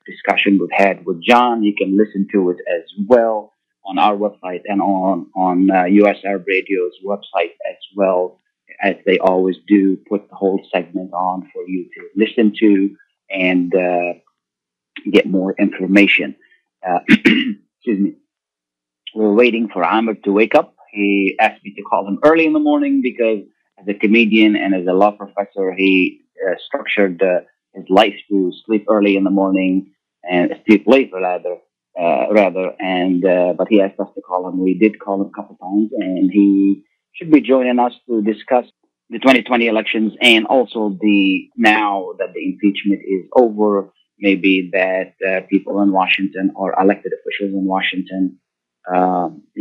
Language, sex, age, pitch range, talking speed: Arabic, male, 30-49, 95-110 Hz, 165 wpm